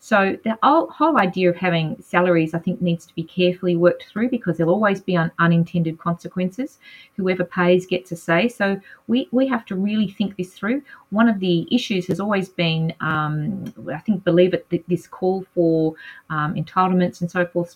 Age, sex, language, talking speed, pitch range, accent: 30-49, female, English, 185 wpm, 170-200 Hz, Australian